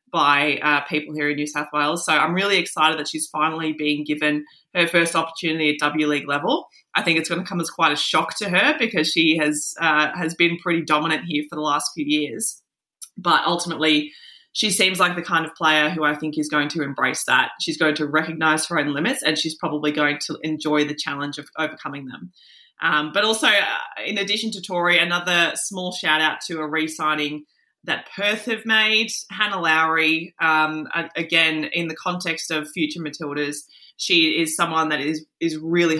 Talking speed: 200 wpm